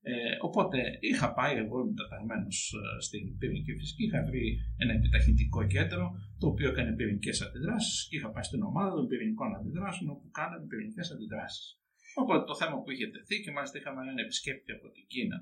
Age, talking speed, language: 50-69, 170 wpm, Greek